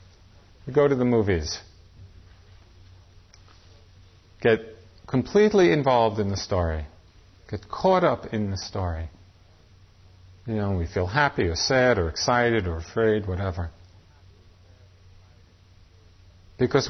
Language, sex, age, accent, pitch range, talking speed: English, male, 40-59, American, 90-120 Hz, 105 wpm